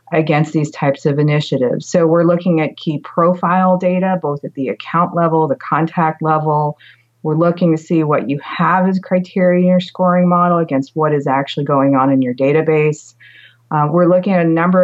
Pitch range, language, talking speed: 145-175 Hz, English, 195 wpm